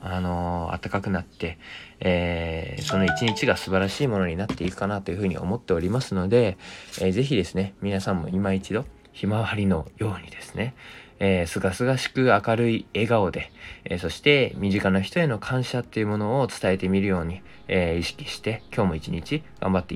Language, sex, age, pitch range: Japanese, male, 20-39, 90-105 Hz